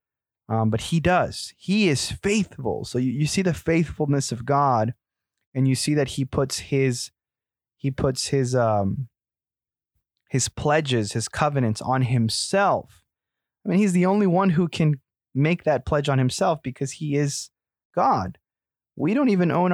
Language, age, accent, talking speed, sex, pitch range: English, 20-39, American, 160 wpm, male, 115-150 Hz